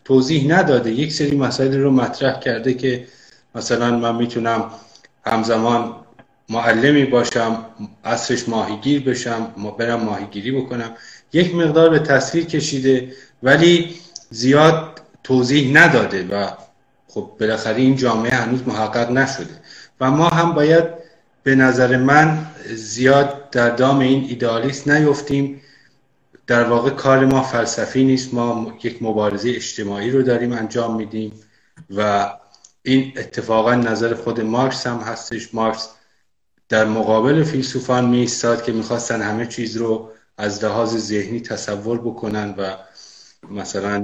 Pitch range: 115-135 Hz